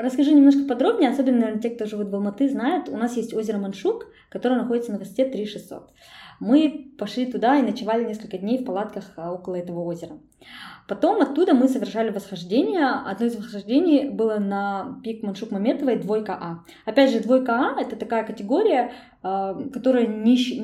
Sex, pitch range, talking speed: female, 195-255 Hz, 165 wpm